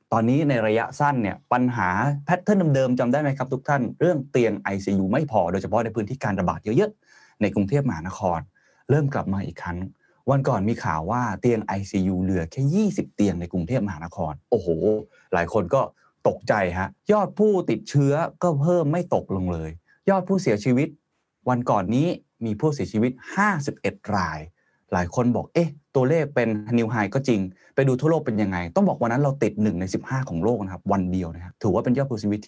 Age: 20-39